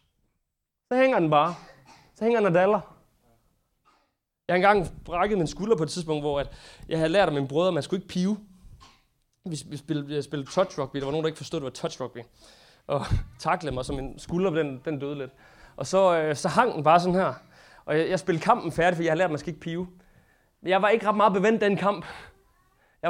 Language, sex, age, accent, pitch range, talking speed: Danish, male, 30-49, native, 150-190 Hz, 220 wpm